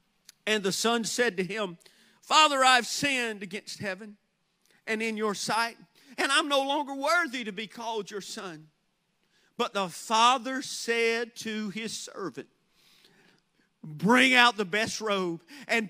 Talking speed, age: 145 wpm, 50-69